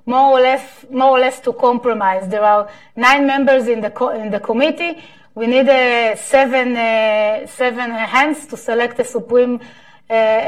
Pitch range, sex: 230-275 Hz, female